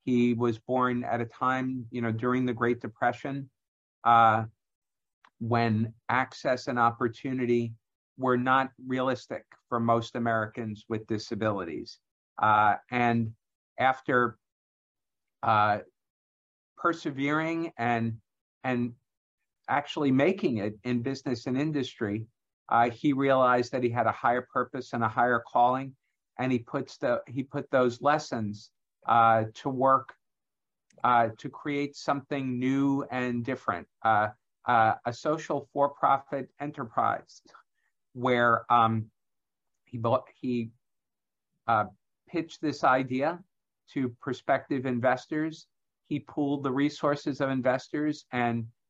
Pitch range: 115-135 Hz